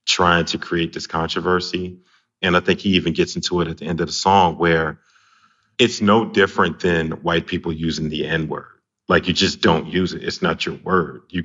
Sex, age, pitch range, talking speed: male, 30-49, 80-95 Hz, 210 wpm